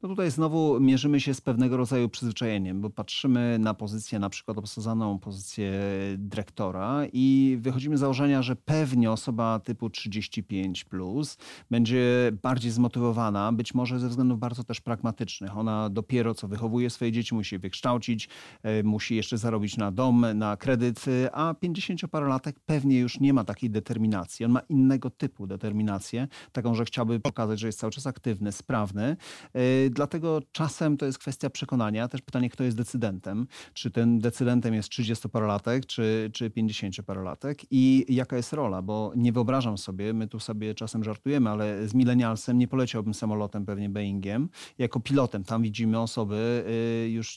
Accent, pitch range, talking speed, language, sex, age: native, 110-130 Hz, 155 wpm, Polish, male, 40-59